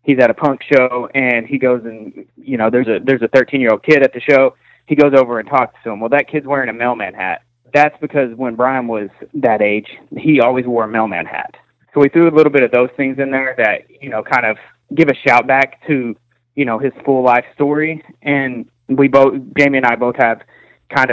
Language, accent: English, American